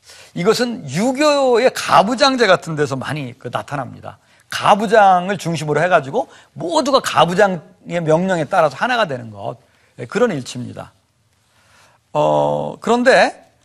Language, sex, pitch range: Korean, male, 140-215 Hz